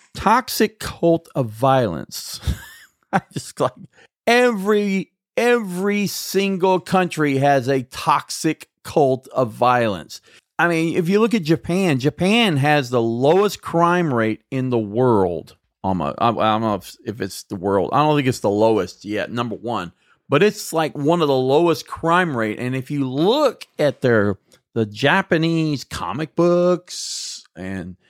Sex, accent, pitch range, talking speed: male, American, 120-180 Hz, 145 wpm